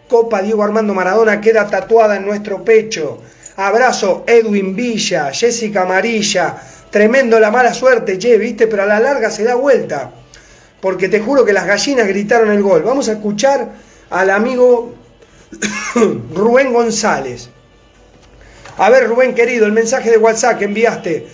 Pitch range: 205-250 Hz